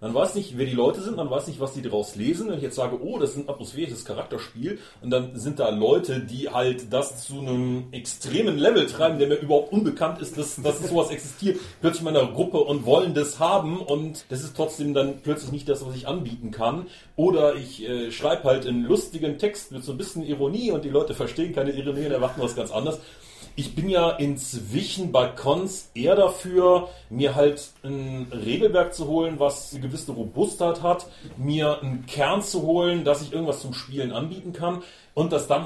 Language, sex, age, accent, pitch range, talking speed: German, male, 40-59, German, 125-150 Hz, 210 wpm